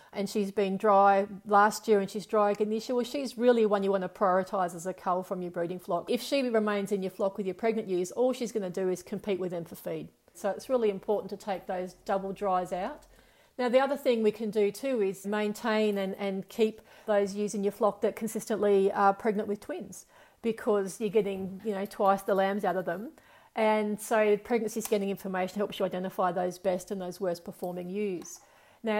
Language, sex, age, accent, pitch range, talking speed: English, female, 40-59, Australian, 195-220 Hz, 225 wpm